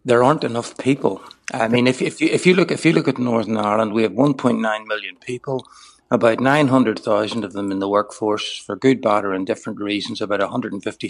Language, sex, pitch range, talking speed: English, male, 105-130 Hz, 255 wpm